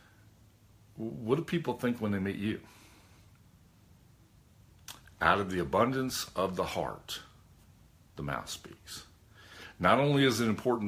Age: 50-69